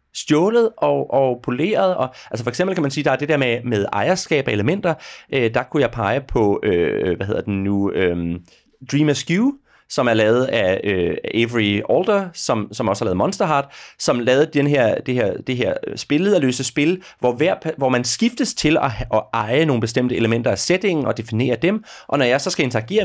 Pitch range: 115-155 Hz